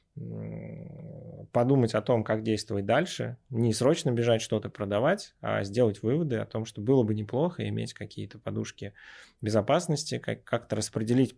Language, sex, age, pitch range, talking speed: Russian, male, 20-39, 100-120 Hz, 135 wpm